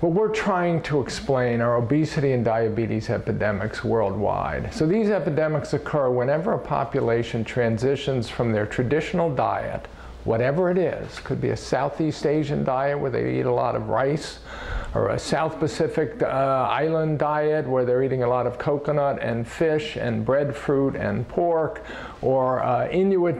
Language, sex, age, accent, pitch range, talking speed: English, male, 50-69, American, 125-155 Hz, 160 wpm